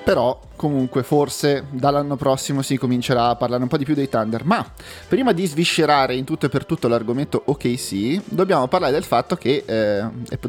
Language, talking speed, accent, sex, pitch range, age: Italian, 195 wpm, native, male, 115-140 Hz, 30-49